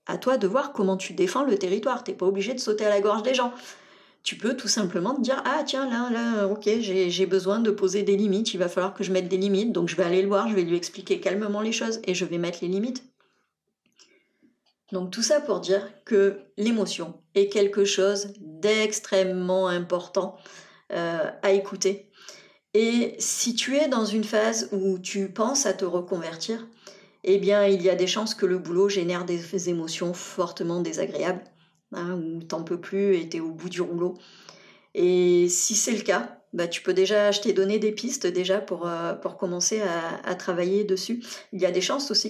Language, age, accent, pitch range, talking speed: French, 40-59, French, 185-215 Hz, 215 wpm